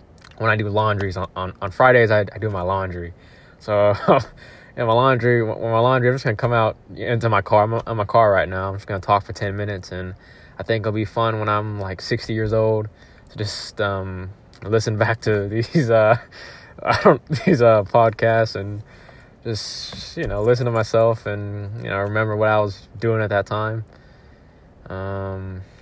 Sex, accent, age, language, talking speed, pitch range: male, American, 20-39, English, 195 wpm, 100-115 Hz